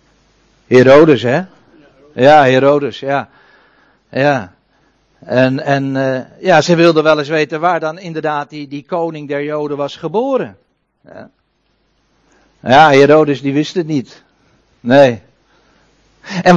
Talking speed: 125 wpm